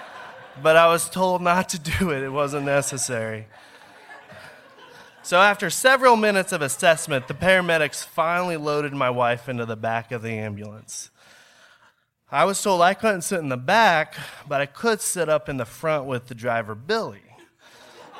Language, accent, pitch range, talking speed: English, American, 115-175 Hz, 165 wpm